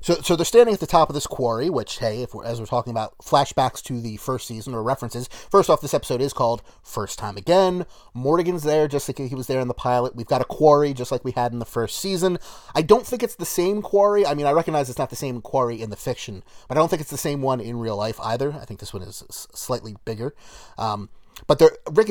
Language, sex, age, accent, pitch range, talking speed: English, male, 30-49, American, 120-155 Hz, 265 wpm